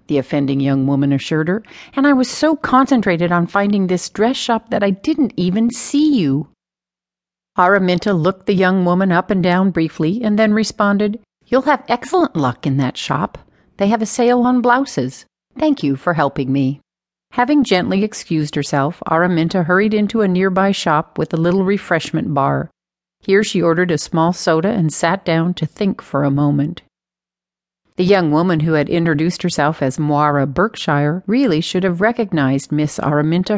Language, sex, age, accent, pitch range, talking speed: English, female, 50-69, American, 155-215 Hz, 175 wpm